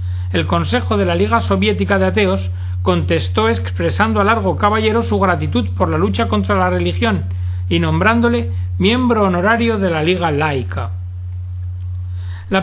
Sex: male